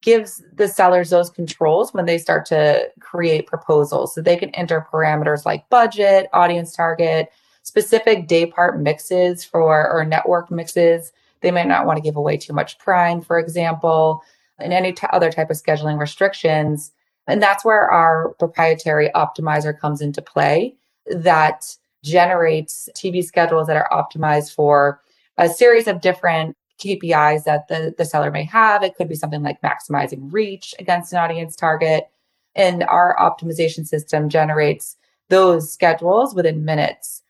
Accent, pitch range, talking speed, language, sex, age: American, 155-180 Hz, 155 wpm, English, female, 20-39